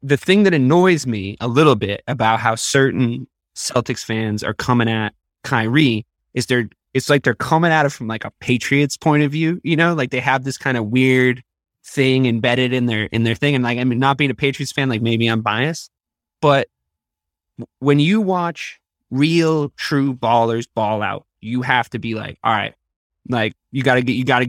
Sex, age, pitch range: male, 20-39, 115-145 Hz